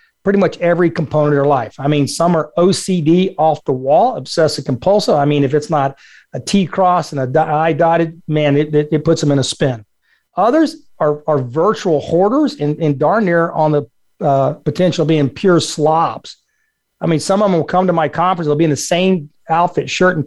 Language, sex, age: English, male, 40-59